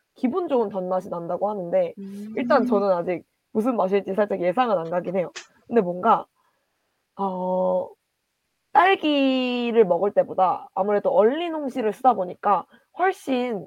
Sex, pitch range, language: female, 190-270 Hz, Korean